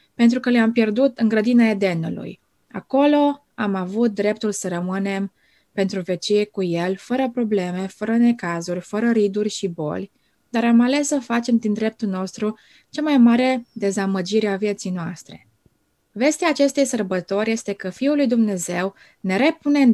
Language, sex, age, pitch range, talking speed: Romanian, female, 20-39, 195-245 Hz, 155 wpm